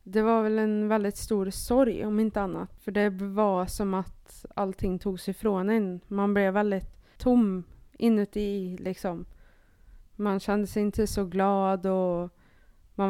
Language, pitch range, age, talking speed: Swedish, 185-210 Hz, 20-39, 155 wpm